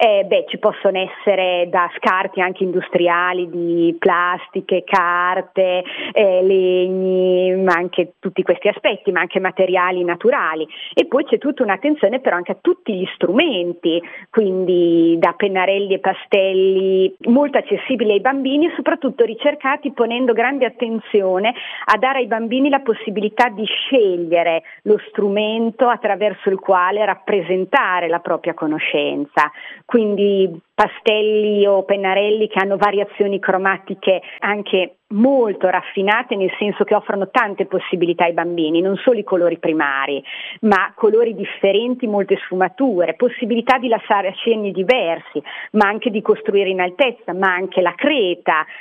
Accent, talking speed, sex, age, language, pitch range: native, 135 wpm, female, 40-59, Italian, 180-225 Hz